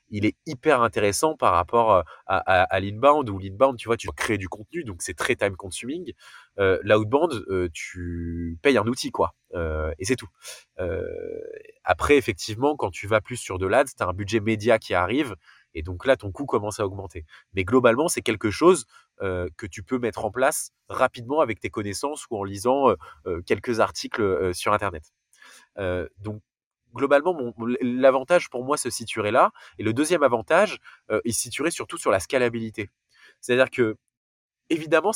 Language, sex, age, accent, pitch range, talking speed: French, male, 20-39, French, 100-140 Hz, 190 wpm